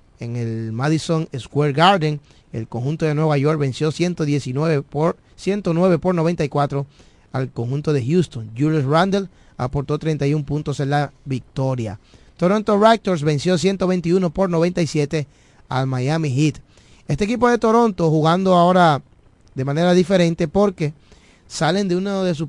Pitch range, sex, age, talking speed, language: 130-165 Hz, male, 30-49, 135 wpm, Spanish